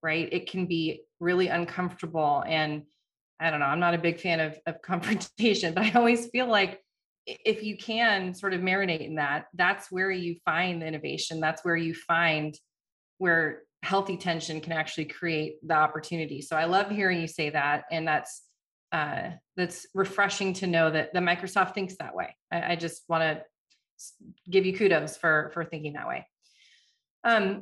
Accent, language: American, English